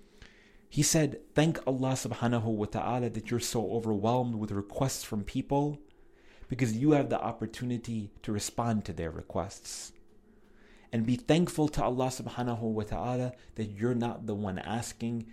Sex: male